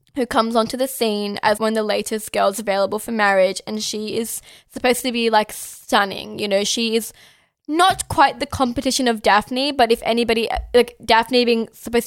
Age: 10-29